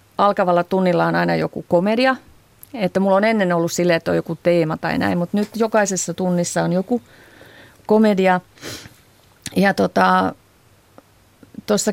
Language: Finnish